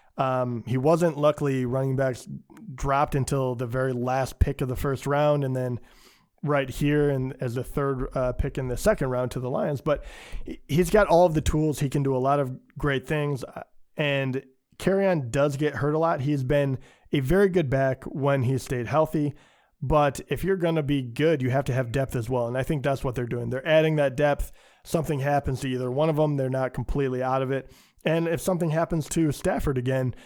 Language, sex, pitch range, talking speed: English, male, 130-155 Hz, 220 wpm